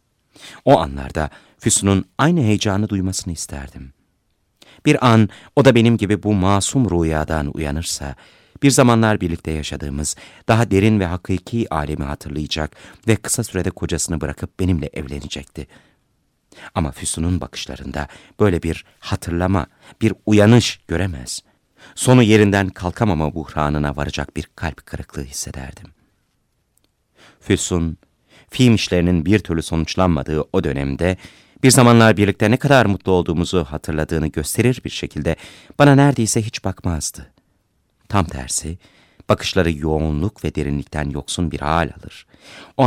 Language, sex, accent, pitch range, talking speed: Turkish, male, native, 80-110 Hz, 120 wpm